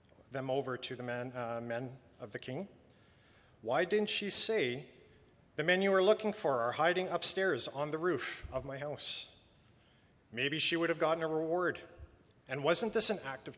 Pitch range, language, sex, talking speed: 120-155 Hz, English, male, 185 wpm